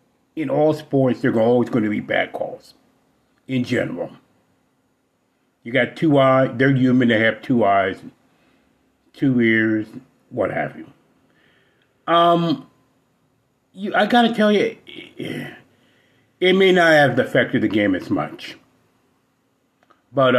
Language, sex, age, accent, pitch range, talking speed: English, male, 40-59, American, 120-145 Hz, 130 wpm